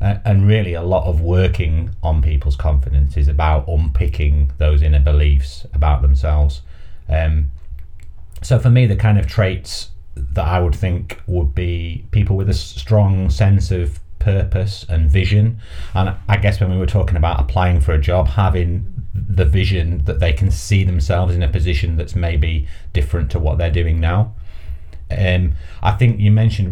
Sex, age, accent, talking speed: male, 30-49, British, 170 wpm